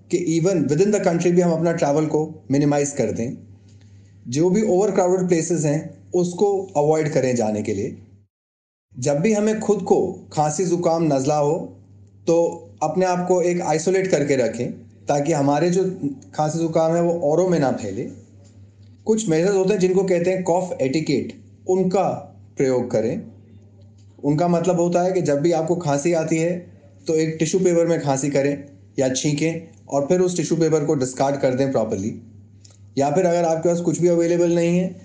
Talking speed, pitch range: 180 wpm, 130-175 Hz